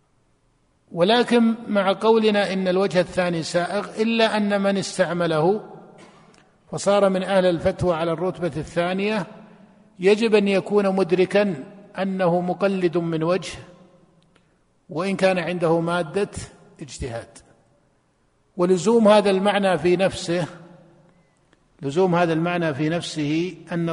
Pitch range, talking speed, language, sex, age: 170-195 Hz, 105 wpm, Arabic, male, 50-69